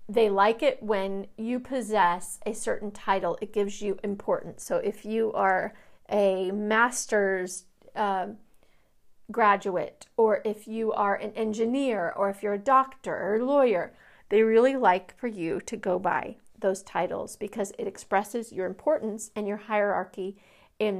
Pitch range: 200-240 Hz